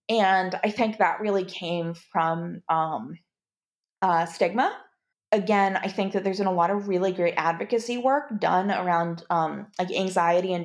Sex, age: female, 20-39